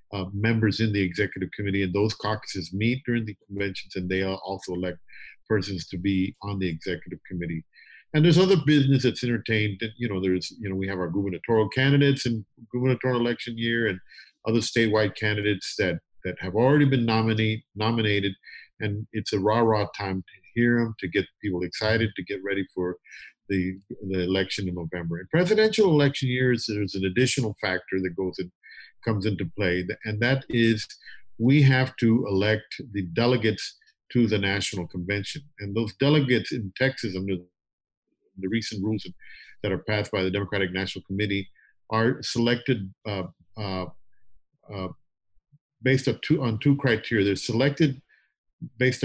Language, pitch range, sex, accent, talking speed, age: English, 95-120 Hz, male, American, 160 wpm, 50-69